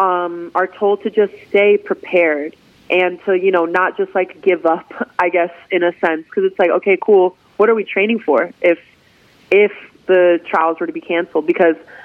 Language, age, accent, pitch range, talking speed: English, 20-39, American, 165-200 Hz, 200 wpm